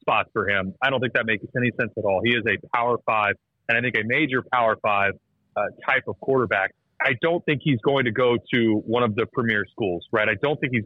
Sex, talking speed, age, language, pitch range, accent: male, 255 wpm, 30-49, English, 110-135 Hz, American